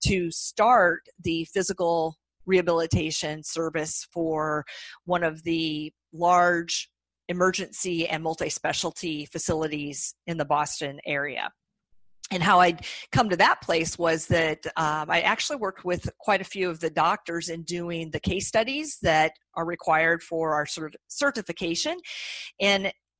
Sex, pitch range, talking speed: female, 160-190 Hz, 135 wpm